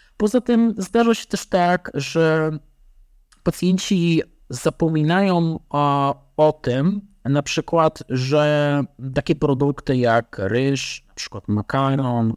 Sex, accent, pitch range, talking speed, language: male, native, 115-165 Hz, 105 wpm, Polish